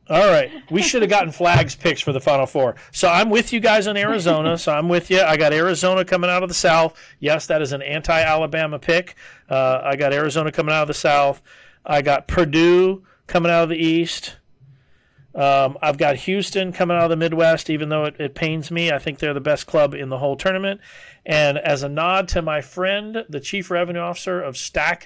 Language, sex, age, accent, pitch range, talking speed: English, male, 40-59, American, 140-175 Hz, 220 wpm